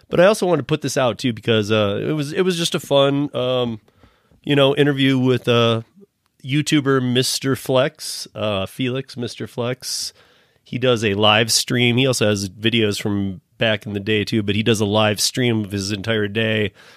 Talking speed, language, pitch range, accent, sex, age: 200 wpm, English, 105-130 Hz, American, male, 30-49